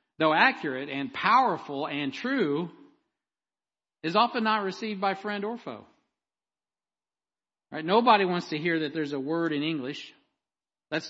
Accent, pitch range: American, 135-190 Hz